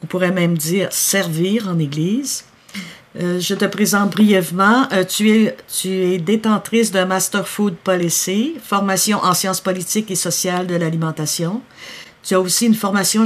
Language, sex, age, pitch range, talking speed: French, female, 60-79, 170-220 Hz, 150 wpm